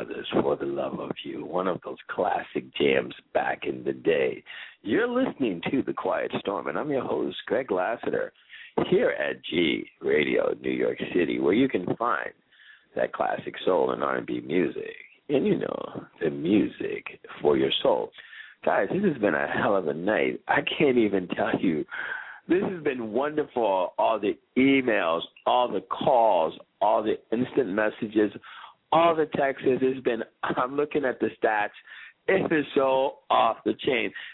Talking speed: 165 wpm